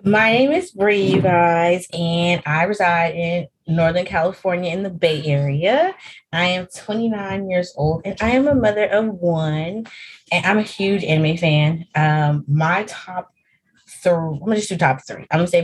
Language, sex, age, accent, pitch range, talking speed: English, female, 20-39, American, 155-195 Hz, 180 wpm